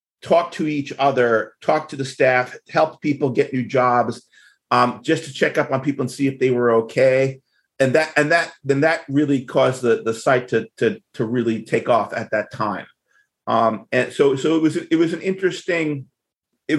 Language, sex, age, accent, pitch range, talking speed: English, male, 40-59, American, 120-145 Hz, 205 wpm